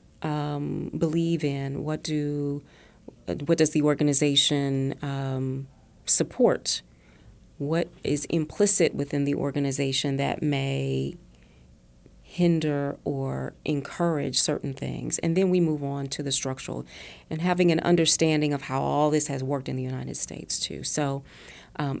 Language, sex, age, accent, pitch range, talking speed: English, female, 40-59, American, 135-155 Hz, 135 wpm